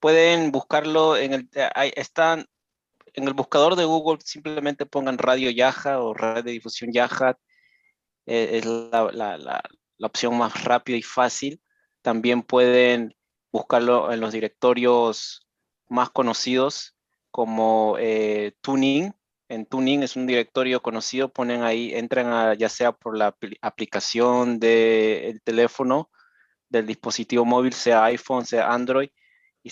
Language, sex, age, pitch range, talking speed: Spanish, male, 30-49, 115-135 Hz, 135 wpm